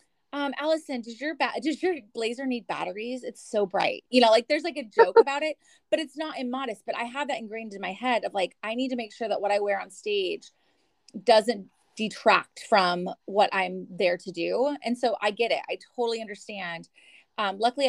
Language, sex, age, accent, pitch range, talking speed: English, female, 30-49, American, 205-285 Hz, 220 wpm